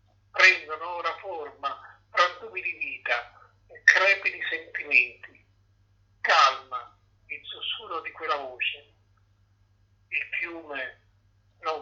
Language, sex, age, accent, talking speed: Italian, male, 50-69, native, 90 wpm